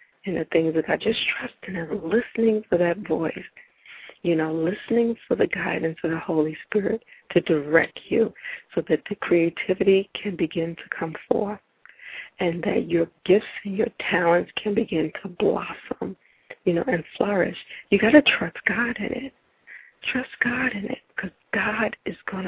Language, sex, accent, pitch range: English, female, American, 165-220 Hz